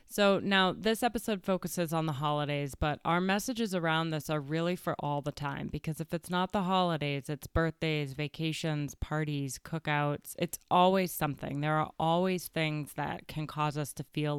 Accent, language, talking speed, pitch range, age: American, English, 180 wpm, 150-180 Hz, 20-39